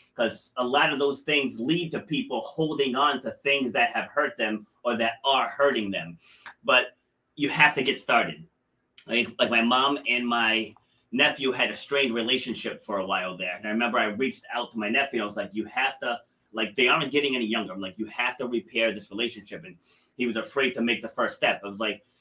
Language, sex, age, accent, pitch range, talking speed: English, male, 30-49, American, 110-135 Hz, 230 wpm